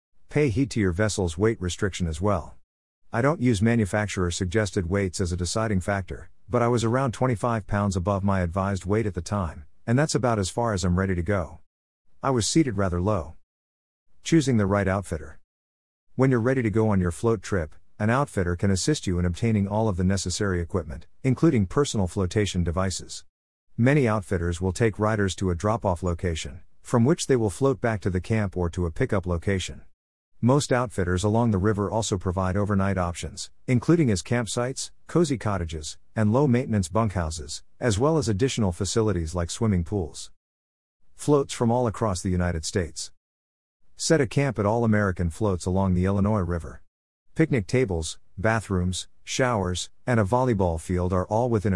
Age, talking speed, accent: 50-69, 175 wpm, American